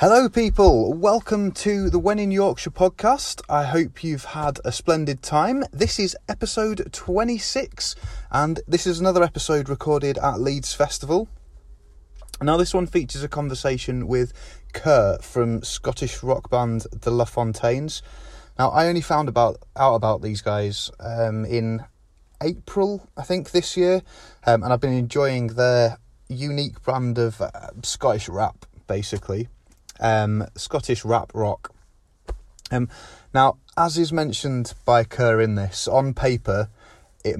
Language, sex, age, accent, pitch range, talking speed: English, male, 30-49, British, 115-150 Hz, 145 wpm